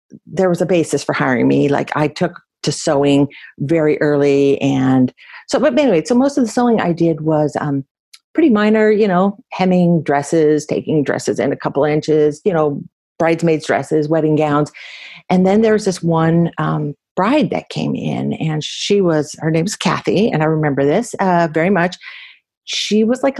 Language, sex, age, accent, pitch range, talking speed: English, female, 50-69, American, 150-205 Hz, 185 wpm